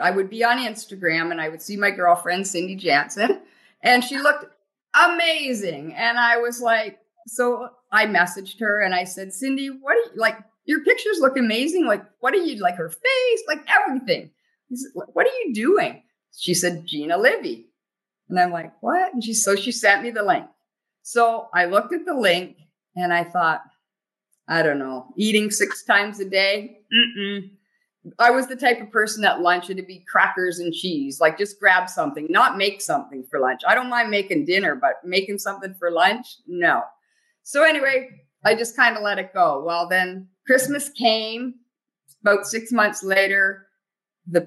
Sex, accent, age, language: female, American, 50-69, English